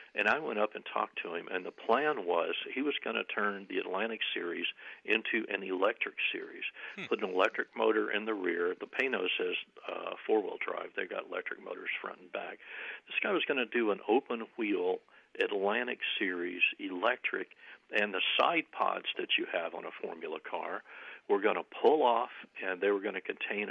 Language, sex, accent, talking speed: English, male, American, 195 wpm